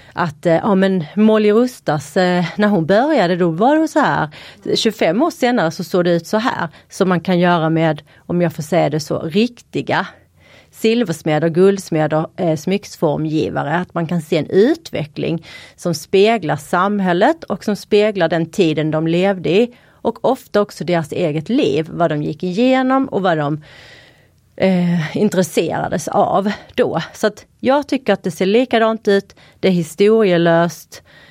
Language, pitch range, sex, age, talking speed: Swedish, 165-215 Hz, female, 30-49, 160 wpm